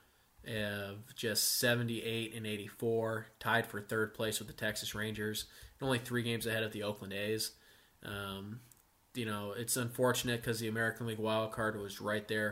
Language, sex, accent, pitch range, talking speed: English, male, American, 110-120 Hz, 180 wpm